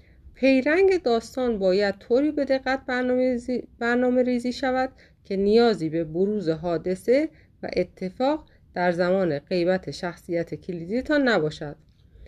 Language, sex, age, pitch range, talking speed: Persian, female, 30-49, 165-250 Hz, 110 wpm